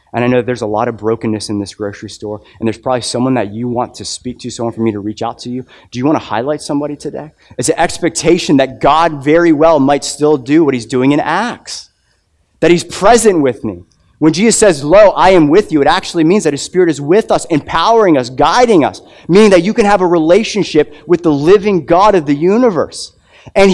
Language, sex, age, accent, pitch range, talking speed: English, male, 30-49, American, 135-205 Hz, 235 wpm